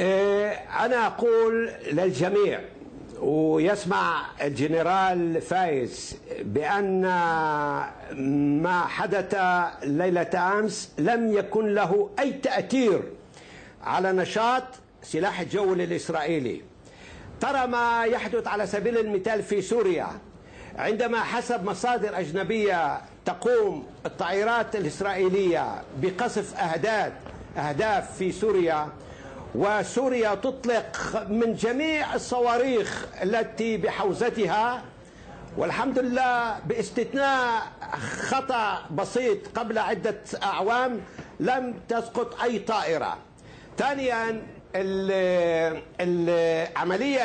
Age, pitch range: 60-79, 180-235 Hz